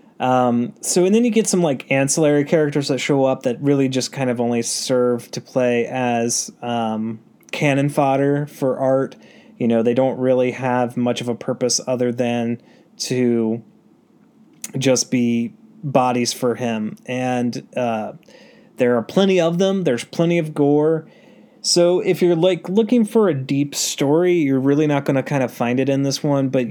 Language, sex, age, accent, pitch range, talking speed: English, male, 30-49, American, 120-155 Hz, 175 wpm